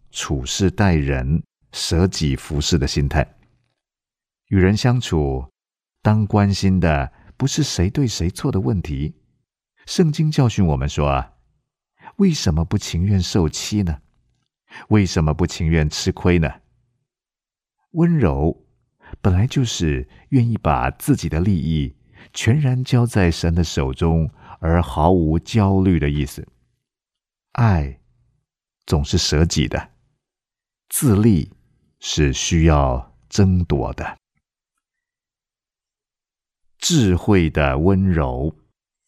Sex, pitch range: male, 75-100 Hz